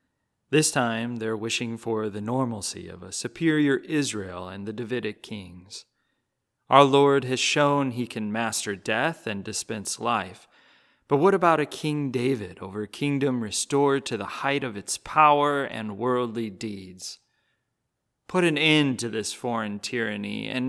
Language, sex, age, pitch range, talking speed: English, male, 30-49, 110-140 Hz, 155 wpm